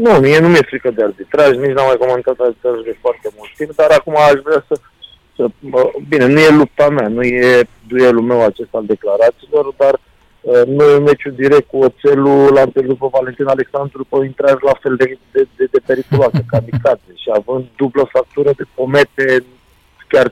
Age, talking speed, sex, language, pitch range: 40-59, 190 wpm, male, Romanian, 120-150 Hz